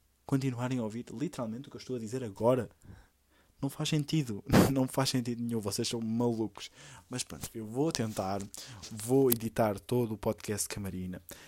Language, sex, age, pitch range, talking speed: Portuguese, male, 20-39, 105-135 Hz, 165 wpm